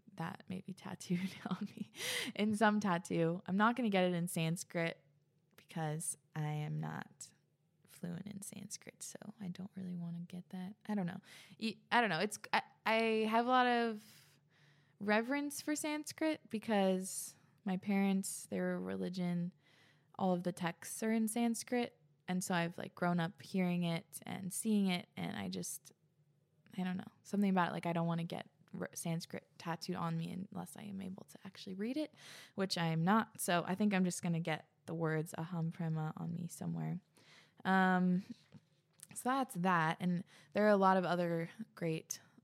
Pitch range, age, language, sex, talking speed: 165-205 Hz, 20-39, English, female, 180 wpm